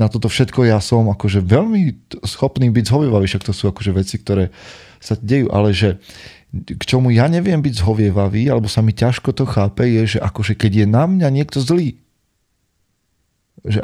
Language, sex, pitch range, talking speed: Slovak, male, 100-120 Hz, 180 wpm